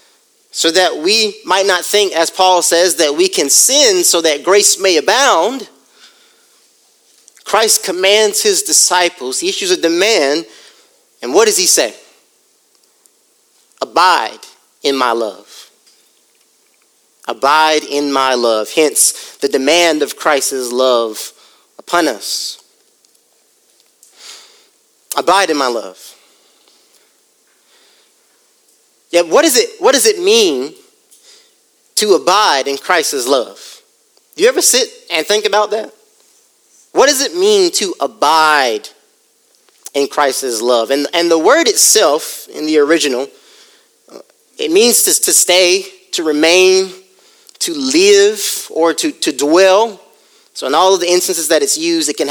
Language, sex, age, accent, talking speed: English, male, 30-49, American, 130 wpm